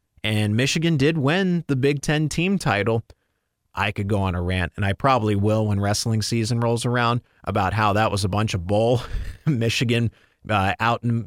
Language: English